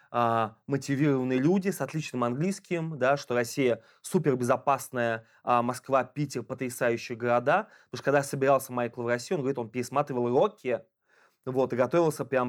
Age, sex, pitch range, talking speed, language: 20-39, male, 125-150 Hz, 125 wpm, Russian